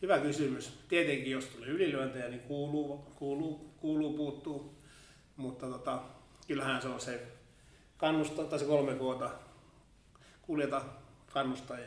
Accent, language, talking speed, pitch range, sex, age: native, Finnish, 120 wpm, 130-150 Hz, male, 30-49